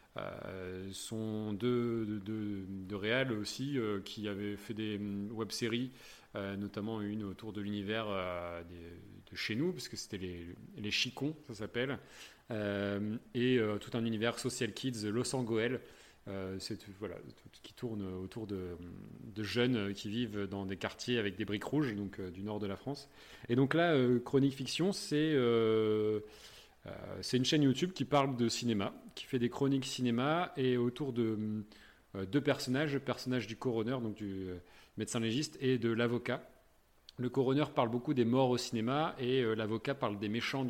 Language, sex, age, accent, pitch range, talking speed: French, male, 30-49, French, 100-125 Hz, 185 wpm